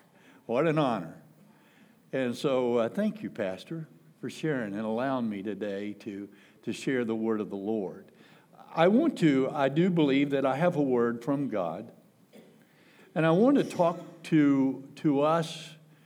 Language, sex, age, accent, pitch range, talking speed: English, male, 60-79, American, 125-170 Hz, 165 wpm